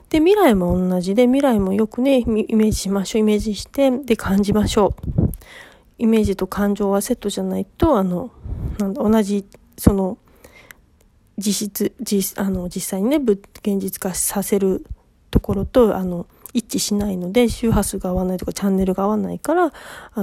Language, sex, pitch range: Japanese, female, 200-255 Hz